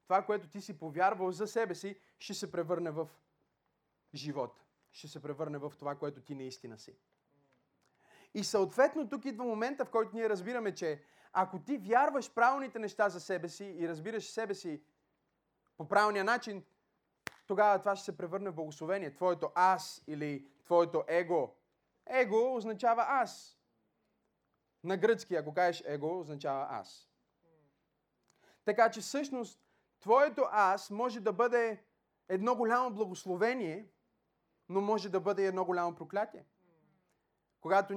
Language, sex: Bulgarian, male